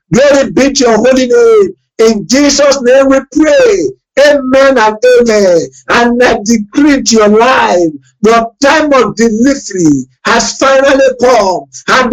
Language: English